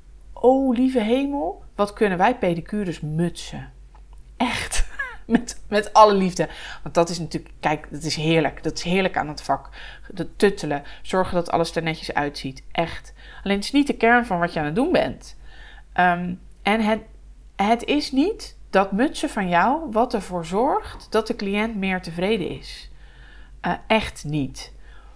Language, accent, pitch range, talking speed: English, Dutch, 160-230 Hz, 170 wpm